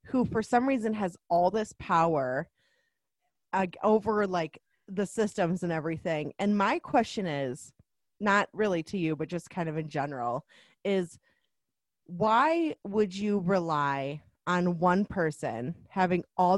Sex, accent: female, American